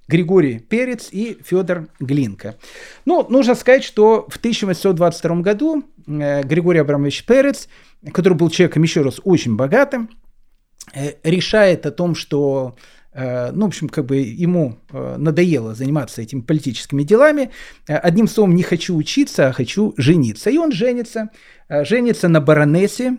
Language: Russian